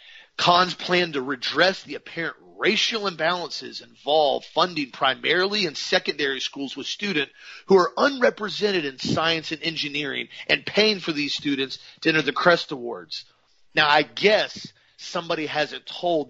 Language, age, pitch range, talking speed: English, 40-59, 150-195 Hz, 145 wpm